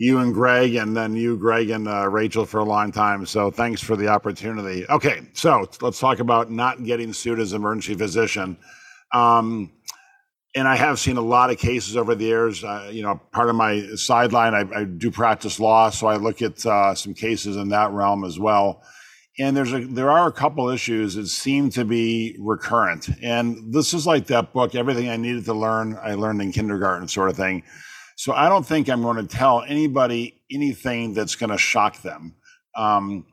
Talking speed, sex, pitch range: 205 wpm, male, 105-125 Hz